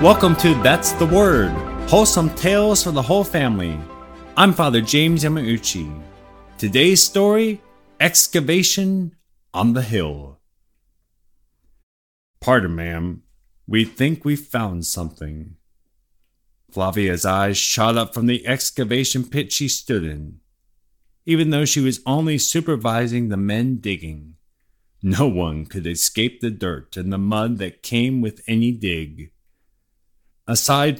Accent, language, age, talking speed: American, English, 30-49, 120 wpm